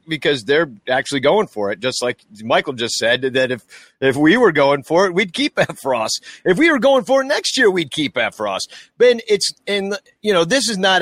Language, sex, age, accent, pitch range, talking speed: English, male, 40-59, American, 125-190 Hz, 235 wpm